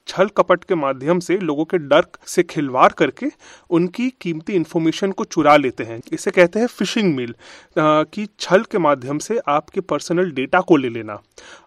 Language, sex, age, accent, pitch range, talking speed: Hindi, male, 30-49, native, 150-200 Hz, 175 wpm